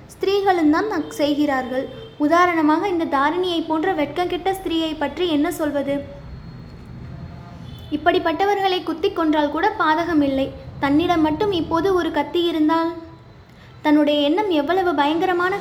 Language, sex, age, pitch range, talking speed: English, female, 20-39, 295-345 Hz, 140 wpm